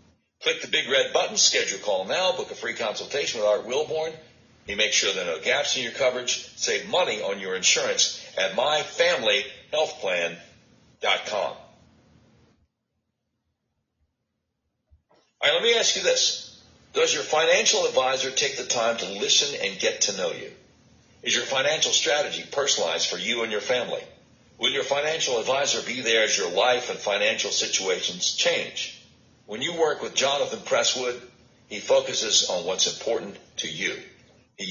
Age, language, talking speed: 60-79, English, 155 wpm